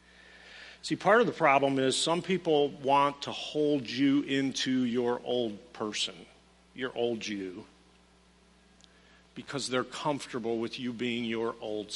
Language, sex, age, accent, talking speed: English, male, 50-69, American, 135 wpm